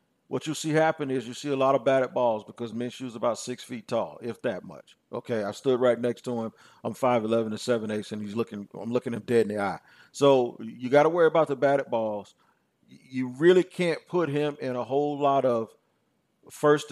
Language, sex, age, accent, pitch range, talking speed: English, male, 40-59, American, 120-145 Hz, 220 wpm